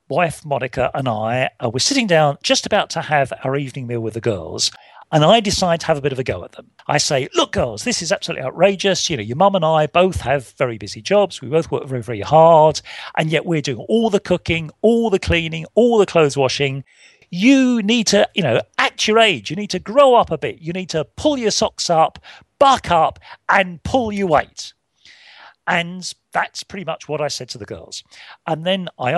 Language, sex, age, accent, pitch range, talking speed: English, male, 40-59, British, 135-200 Hz, 225 wpm